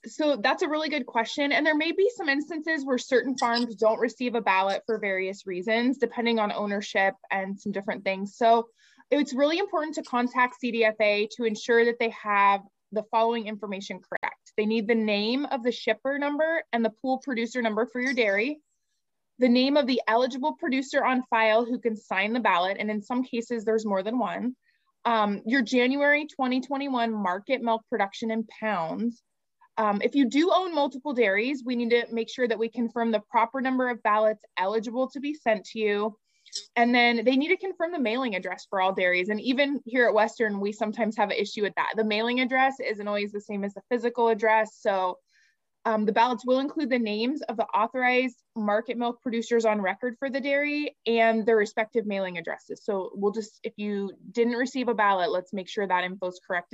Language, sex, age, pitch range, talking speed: English, female, 20-39, 210-255 Hz, 205 wpm